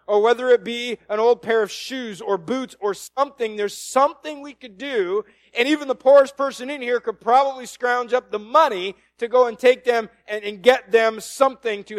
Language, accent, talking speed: English, American, 210 wpm